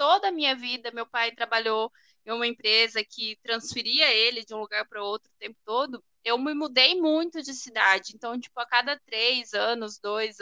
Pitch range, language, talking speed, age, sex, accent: 225-285 Hz, Portuguese, 200 wpm, 10-29, female, Brazilian